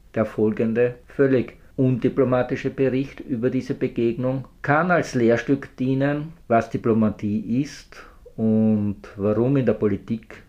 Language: German